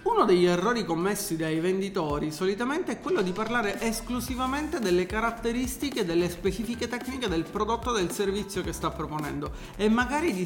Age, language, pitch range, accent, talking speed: 40-59, Italian, 170-230 Hz, native, 160 wpm